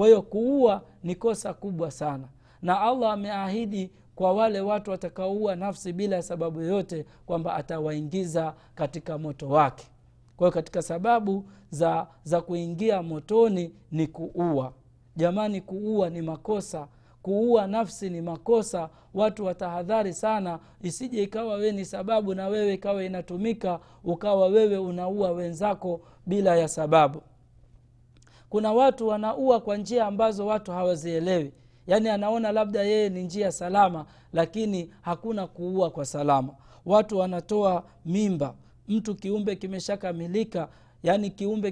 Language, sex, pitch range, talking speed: Swahili, male, 160-205 Hz, 130 wpm